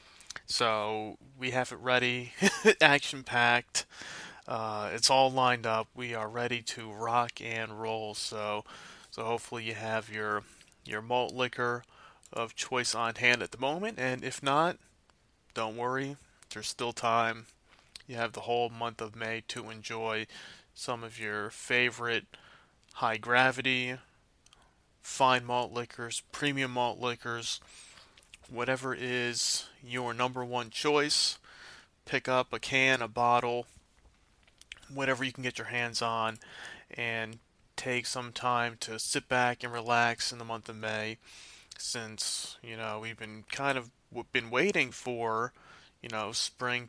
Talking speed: 140 wpm